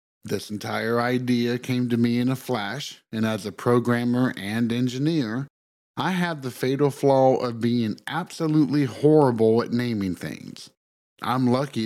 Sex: male